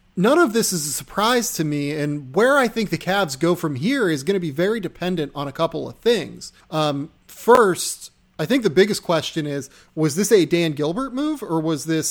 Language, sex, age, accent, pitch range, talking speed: English, male, 30-49, American, 150-190 Hz, 225 wpm